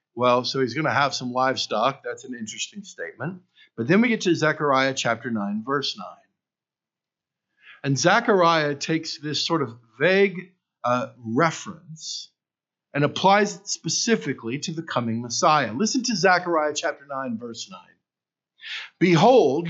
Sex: male